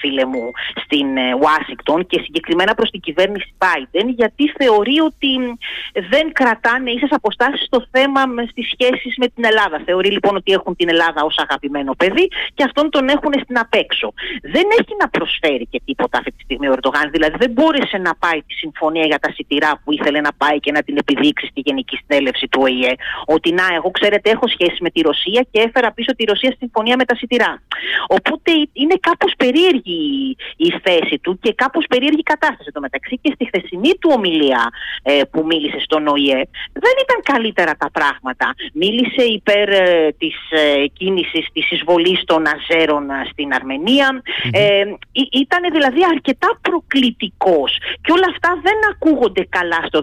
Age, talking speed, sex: 30-49, 170 wpm, female